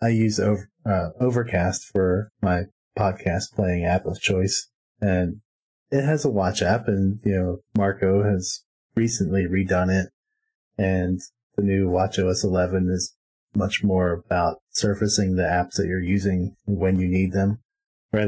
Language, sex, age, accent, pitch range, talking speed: English, male, 30-49, American, 95-110 Hz, 155 wpm